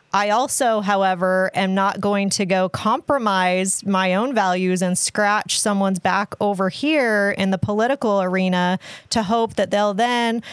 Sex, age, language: female, 30-49, English